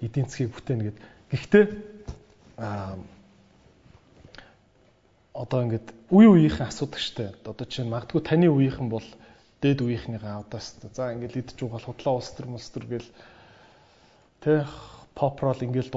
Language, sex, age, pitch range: Korean, male, 20-39, 115-150 Hz